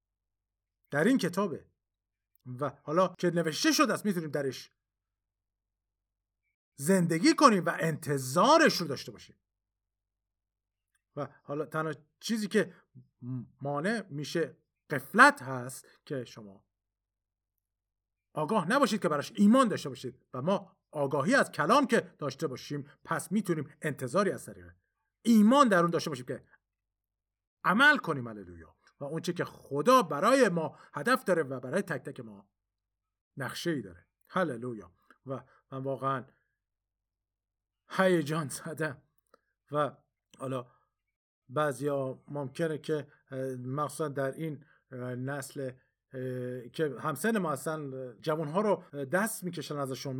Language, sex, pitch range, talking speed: Persian, male, 105-170 Hz, 115 wpm